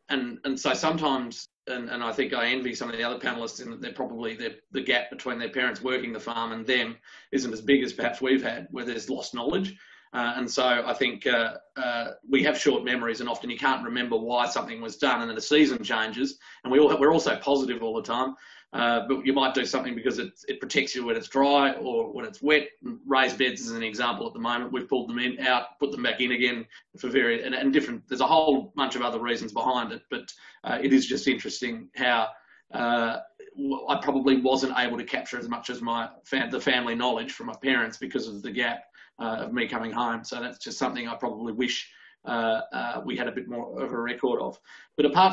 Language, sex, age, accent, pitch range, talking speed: English, male, 30-49, Australian, 120-140 Hz, 235 wpm